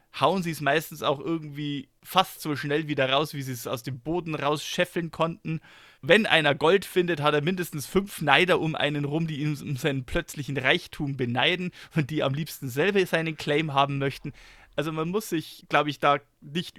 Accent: German